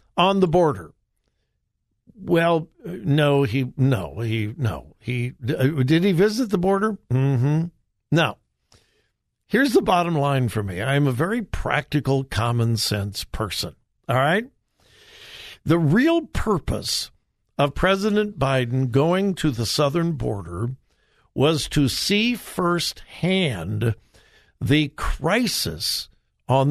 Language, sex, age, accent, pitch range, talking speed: English, male, 60-79, American, 140-210 Hz, 115 wpm